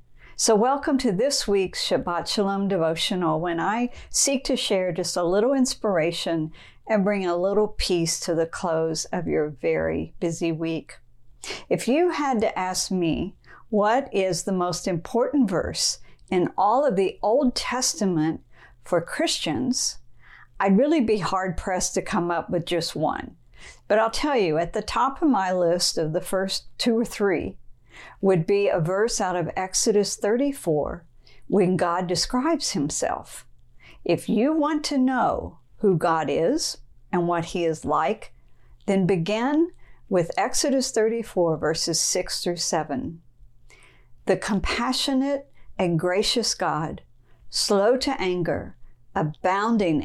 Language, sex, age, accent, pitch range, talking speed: English, female, 50-69, American, 165-225 Hz, 145 wpm